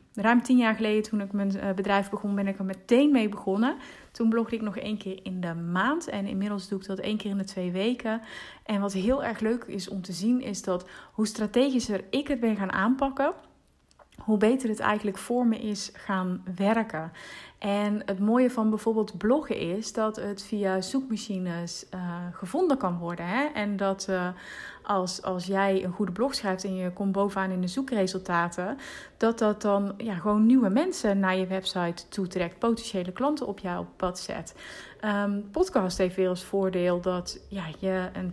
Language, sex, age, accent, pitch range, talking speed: Dutch, female, 30-49, Dutch, 190-230 Hz, 190 wpm